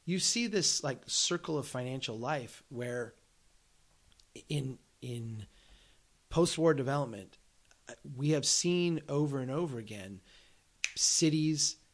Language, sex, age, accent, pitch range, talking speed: English, male, 30-49, American, 120-165 Hz, 105 wpm